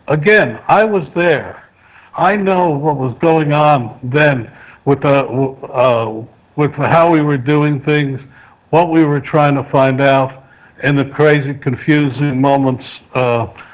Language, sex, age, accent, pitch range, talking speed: English, male, 60-79, American, 130-165 Hz, 145 wpm